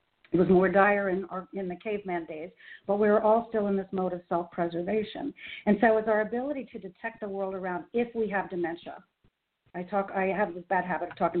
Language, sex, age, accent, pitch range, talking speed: English, female, 50-69, American, 175-220 Hz, 225 wpm